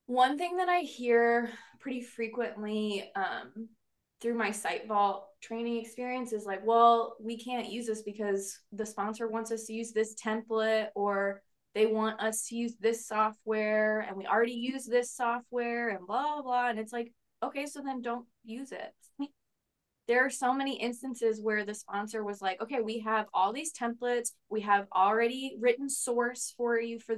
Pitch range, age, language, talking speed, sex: 210-240 Hz, 20-39, English, 180 wpm, female